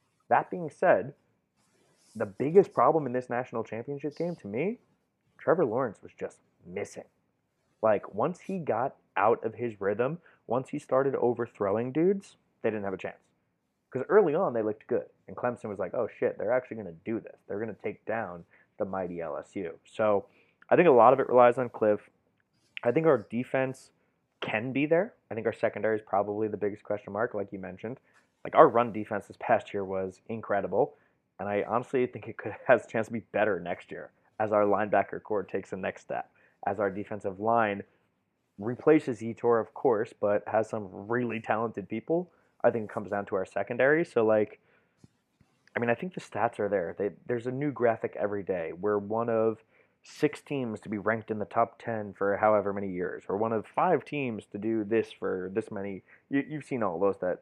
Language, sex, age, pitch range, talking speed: English, male, 20-39, 105-130 Hz, 205 wpm